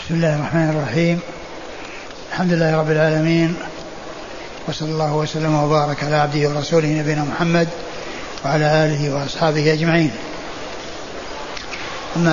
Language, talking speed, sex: Arabic, 105 wpm, male